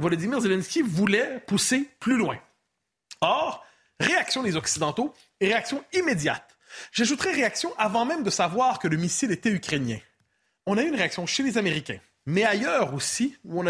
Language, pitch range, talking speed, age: French, 175-260 Hz, 160 wpm, 30-49